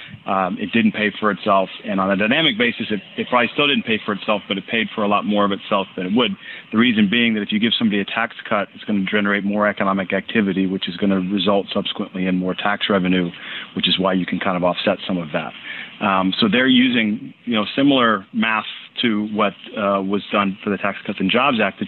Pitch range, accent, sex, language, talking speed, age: 100-120 Hz, American, male, English, 250 wpm, 40-59